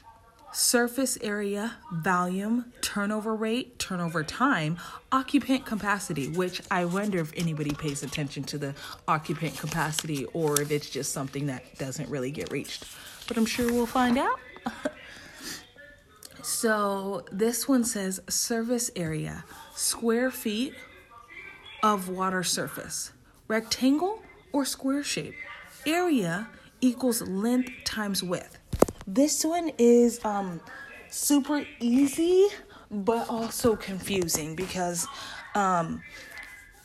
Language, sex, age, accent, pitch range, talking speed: English, female, 30-49, American, 175-240 Hz, 110 wpm